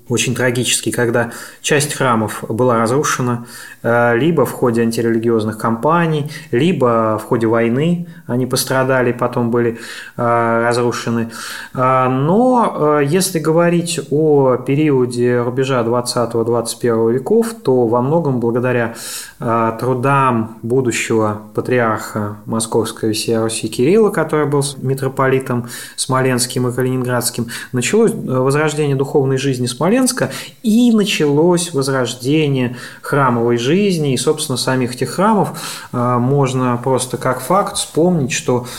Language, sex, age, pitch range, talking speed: Russian, male, 20-39, 120-150 Hz, 100 wpm